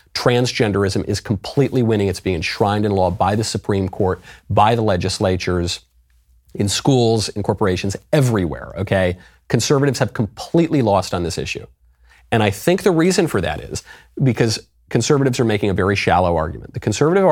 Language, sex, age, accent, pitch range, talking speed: English, male, 40-59, American, 90-125 Hz, 165 wpm